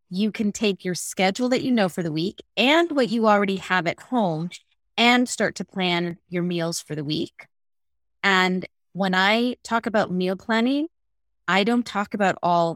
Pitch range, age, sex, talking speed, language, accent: 170-210 Hz, 30-49, female, 185 wpm, English, American